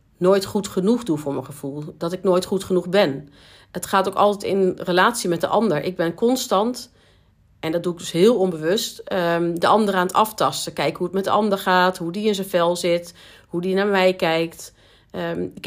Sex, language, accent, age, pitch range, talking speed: female, Dutch, Dutch, 40-59, 165-195 Hz, 215 wpm